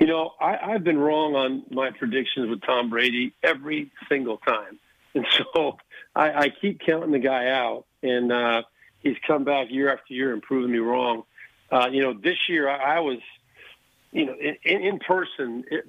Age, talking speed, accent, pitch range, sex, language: 50-69, 185 wpm, American, 125-145 Hz, male, English